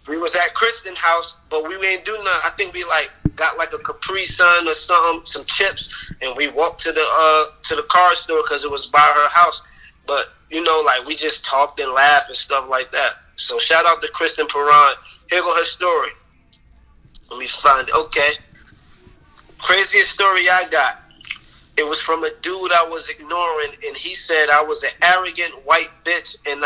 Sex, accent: male, American